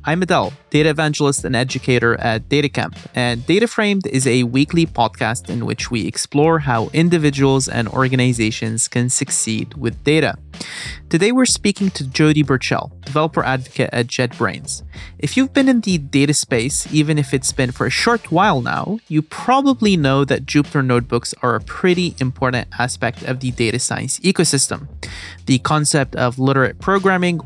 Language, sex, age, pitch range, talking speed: English, male, 30-49, 125-155 Hz, 160 wpm